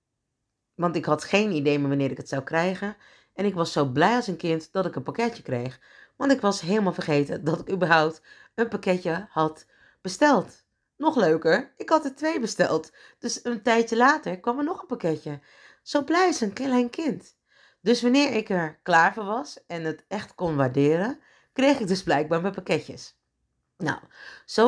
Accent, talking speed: Dutch, 190 wpm